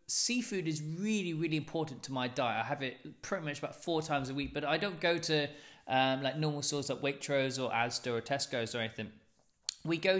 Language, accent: English, British